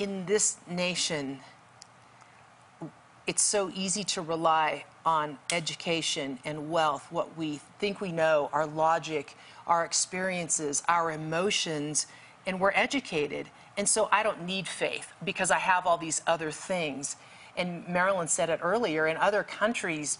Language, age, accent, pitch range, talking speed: English, 40-59, American, 160-205 Hz, 140 wpm